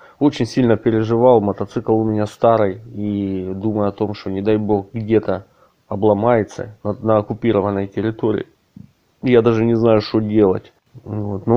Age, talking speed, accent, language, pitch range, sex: 20-39, 145 wpm, native, Ukrainian, 105-125 Hz, male